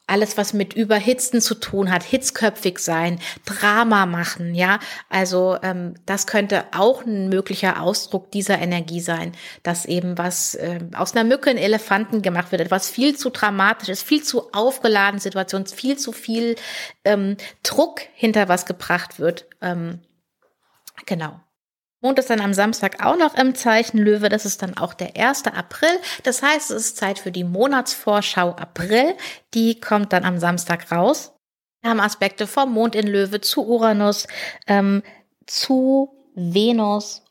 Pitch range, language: 190-235 Hz, German